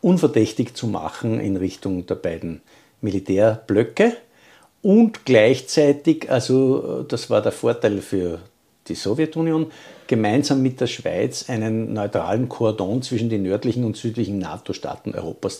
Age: 50-69